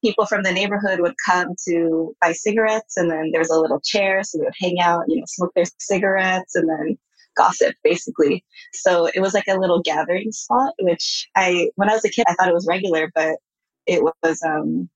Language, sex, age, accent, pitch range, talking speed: English, female, 20-39, American, 170-210 Hz, 215 wpm